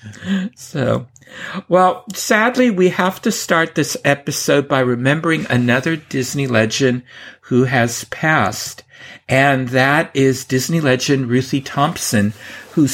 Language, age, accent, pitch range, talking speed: English, 50-69, American, 115-155 Hz, 115 wpm